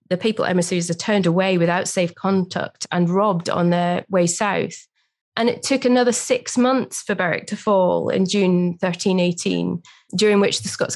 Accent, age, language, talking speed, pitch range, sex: British, 20-39, English, 175 wpm, 180-215 Hz, female